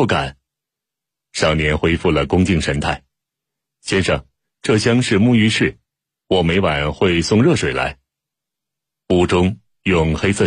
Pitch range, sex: 80-100 Hz, male